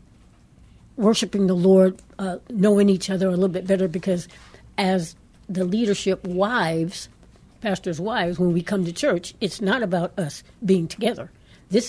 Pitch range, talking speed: 175-205 Hz, 150 wpm